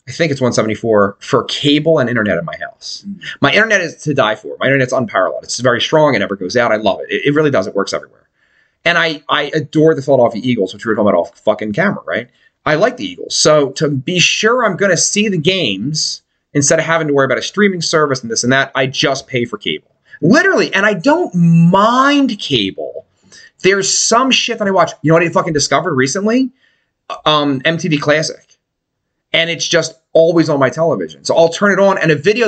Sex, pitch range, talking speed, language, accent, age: male, 130-185 Hz, 220 wpm, English, American, 30-49